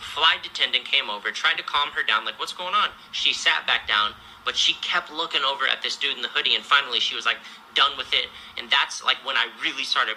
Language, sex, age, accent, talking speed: English, male, 30-49, American, 255 wpm